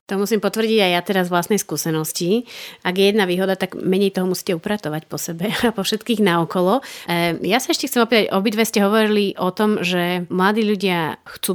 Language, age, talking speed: Slovak, 30-49, 190 wpm